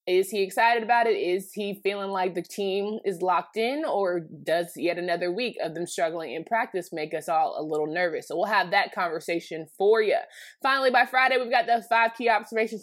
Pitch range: 165-215 Hz